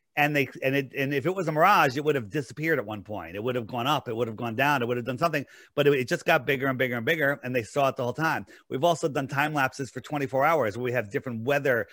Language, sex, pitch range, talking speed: English, male, 125-160 Hz, 310 wpm